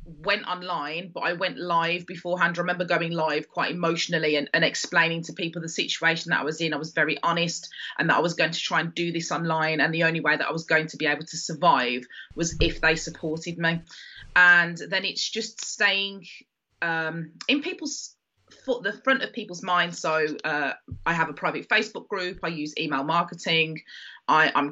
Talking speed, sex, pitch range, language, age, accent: 205 wpm, female, 155-180 Hz, English, 20-39, British